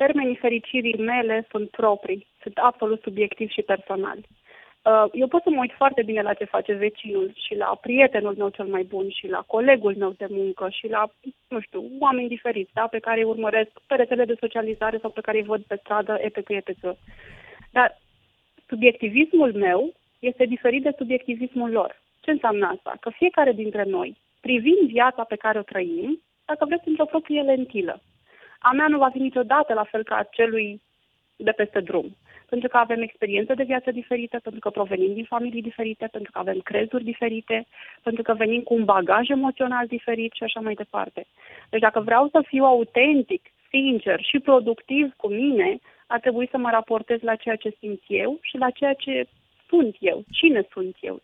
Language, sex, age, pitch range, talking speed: Romanian, female, 30-49, 215-265 Hz, 185 wpm